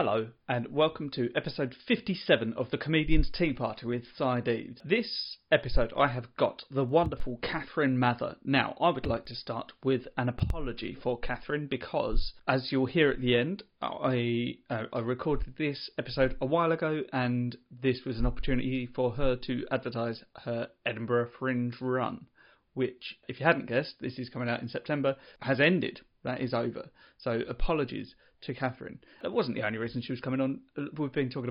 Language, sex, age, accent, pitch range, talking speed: English, male, 30-49, British, 120-140 Hz, 180 wpm